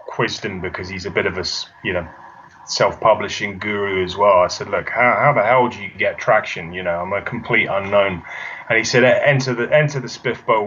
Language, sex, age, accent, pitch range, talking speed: English, male, 20-39, British, 100-120 Hz, 220 wpm